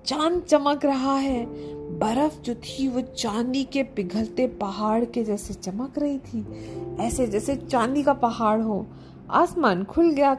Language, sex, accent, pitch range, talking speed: Hindi, female, native, 210-295 Hz, 150 wpm